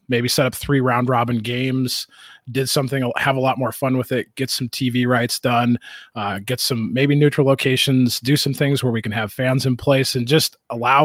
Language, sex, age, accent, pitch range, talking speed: English, male, 30-49, American, 115-135 Hz, 215 wpm